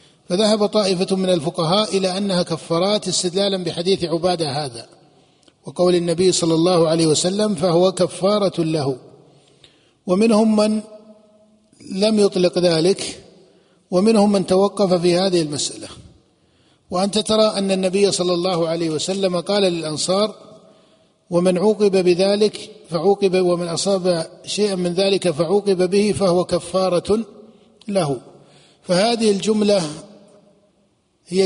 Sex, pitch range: male, 165-200 Hz